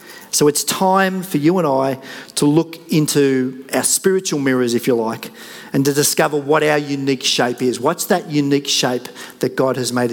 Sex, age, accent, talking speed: male, 40-59, Australian, 190 wpm